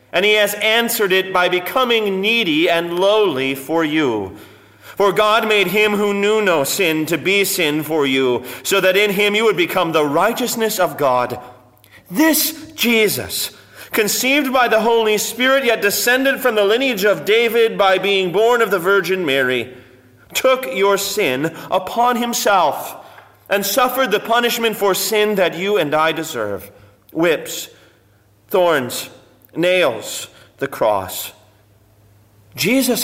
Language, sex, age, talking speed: English, male, 40-59, 145 wpm